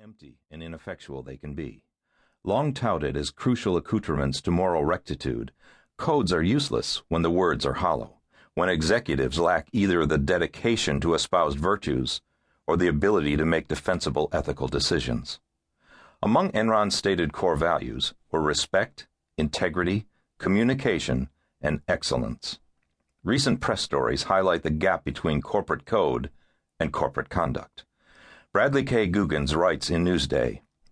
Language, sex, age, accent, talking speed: English, male, 50-69, American, 130 wpm